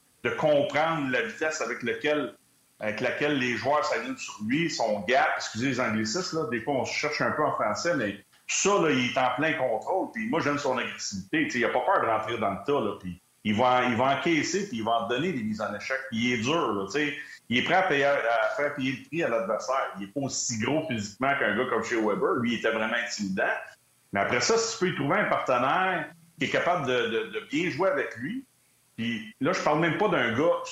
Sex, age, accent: male, 40-59, Canadian